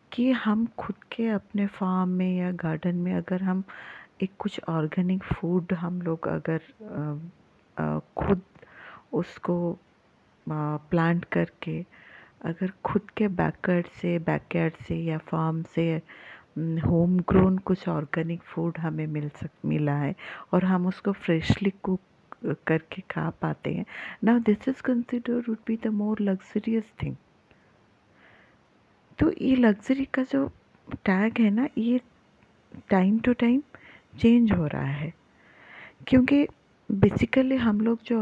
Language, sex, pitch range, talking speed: Hindi, female, 170-230 Hz, 135 wpm